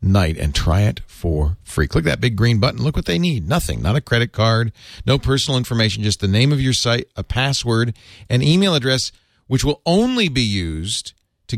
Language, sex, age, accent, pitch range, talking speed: English, male, 50-69, American, 95-125 Hz, 205 wpm